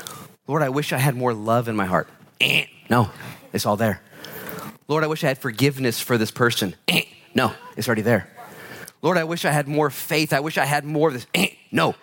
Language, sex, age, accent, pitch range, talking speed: English, male, 30-49, American, 130-185 Hz, 210 wpm